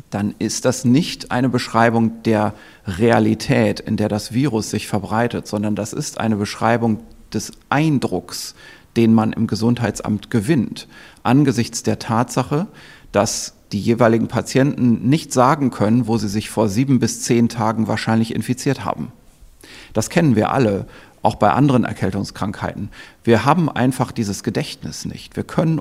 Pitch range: 110-130 Hz